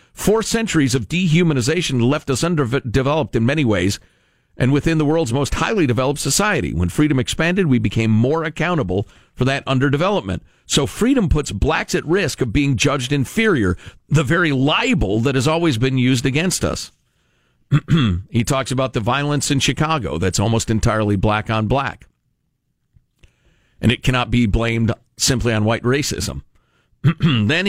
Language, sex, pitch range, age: English, male, 115-160 Hz, 50-69